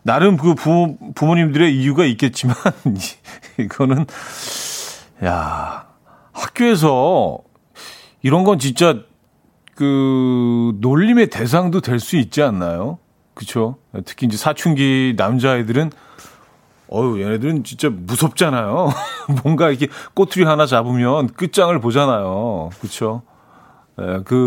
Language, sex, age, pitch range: Korean, male, 40-59, 115-155 Hz